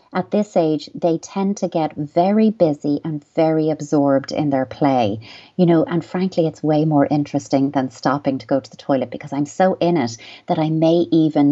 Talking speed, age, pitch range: 205 wpm, 30-49, 145-180 Hz